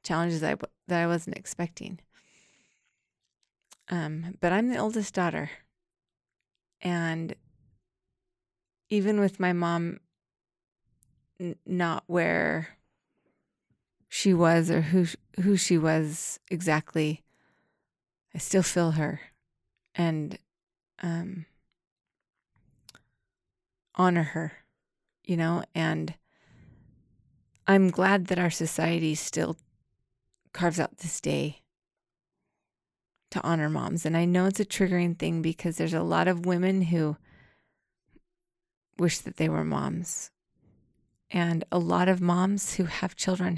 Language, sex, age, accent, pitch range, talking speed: English, female, 20-39, American, 165-185 Hz, 105 wpm